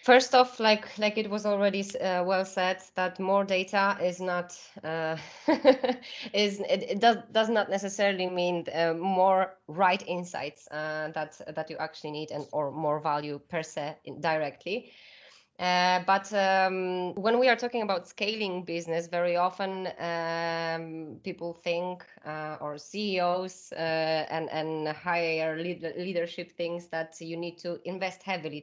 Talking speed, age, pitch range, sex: 150 wpm, 20-39, 160-190 Hz, female